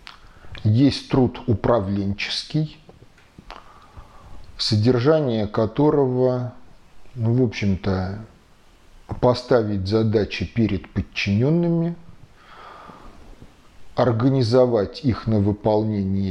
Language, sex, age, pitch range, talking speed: Russian, male, 40-59, 100-125 Hz, 60 wpm